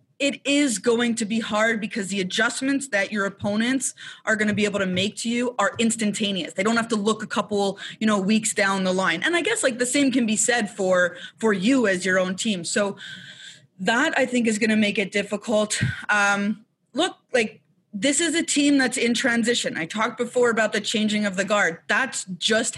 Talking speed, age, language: 220 wpm, 20-39, English